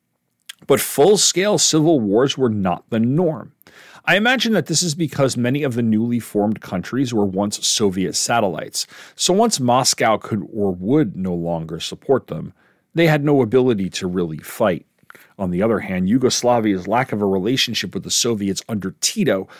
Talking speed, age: 170 wpm, 40-59